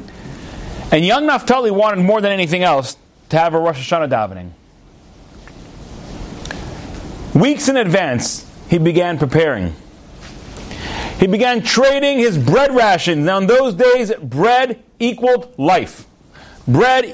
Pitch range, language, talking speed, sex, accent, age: 195-265 Hz, English, 120 wpm, male, American, 40-59